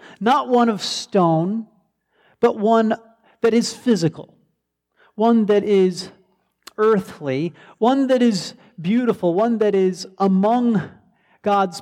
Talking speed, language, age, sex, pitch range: 110 wpm, English, 40-59, male, 135-205 Hz